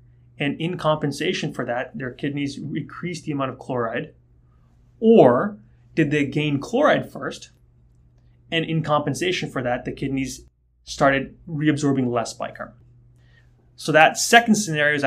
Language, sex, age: English, male, 20-39